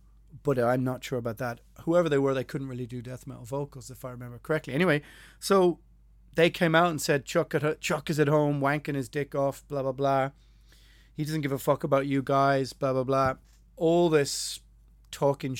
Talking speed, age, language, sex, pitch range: 210 wpm, 30-49, English, male, 130-155 Hz